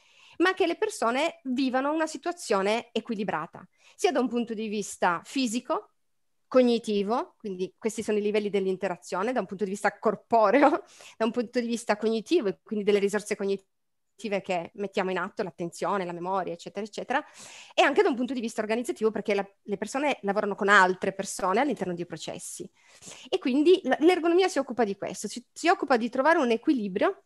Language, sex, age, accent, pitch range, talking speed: Italian, female, 30-49, native, 200-280 Hz, 180 wpm